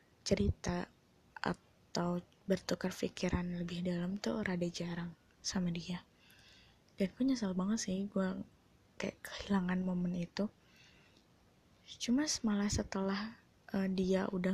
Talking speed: 105 wpm